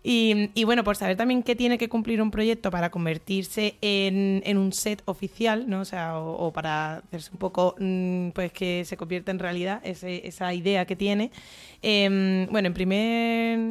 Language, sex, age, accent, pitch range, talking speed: Spanish, female, 20-39, Spanish, 175-205 Hz, 190 wpm